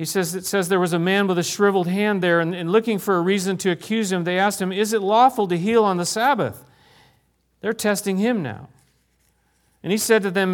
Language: English